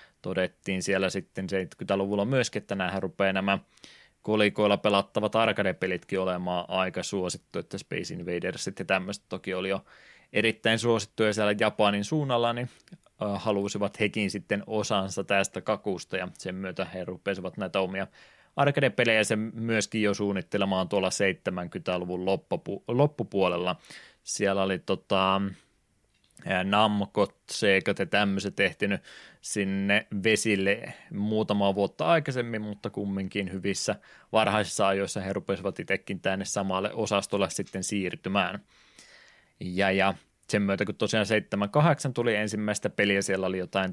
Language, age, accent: Finnish, 20-39, native